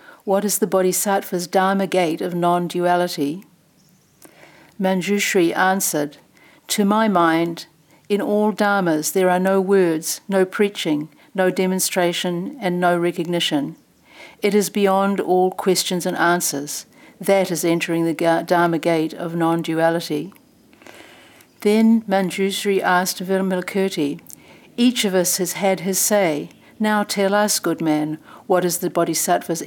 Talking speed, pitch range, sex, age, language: 125 wpm, 165-195 Hz, female, 60-79, English